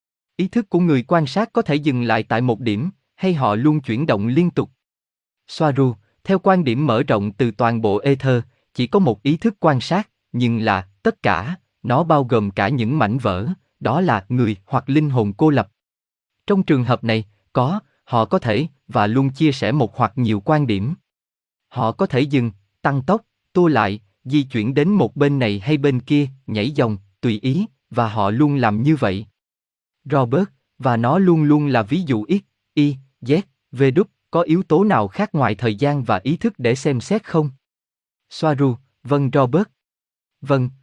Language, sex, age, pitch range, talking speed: Vietnamese, male, 20-39, 110-155 Hz, 195 wpm